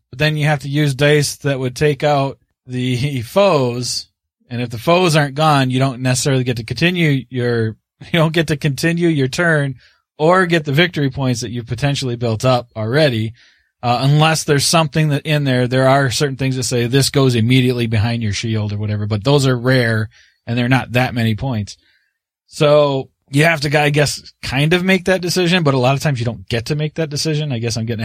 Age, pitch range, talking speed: 20-39, 120-150 Hz, 215 wpm